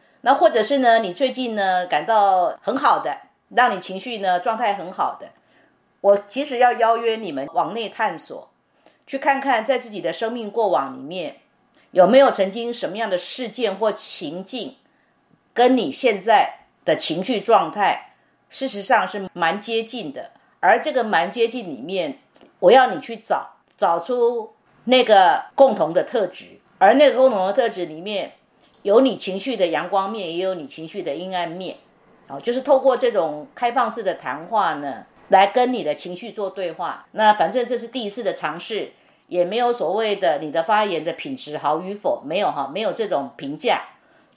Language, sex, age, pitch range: Chinese, female, 50-69, 185-250 Hz